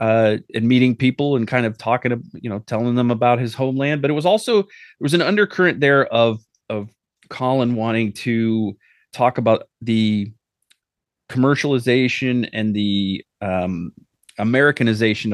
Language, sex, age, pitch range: English, male, 30-49, 105-135 Hz